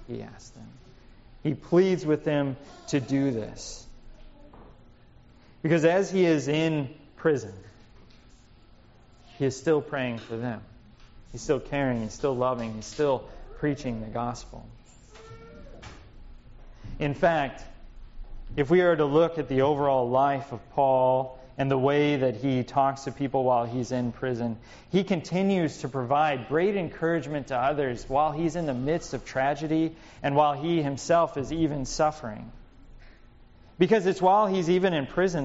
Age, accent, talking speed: 30-49, American, 145 wpm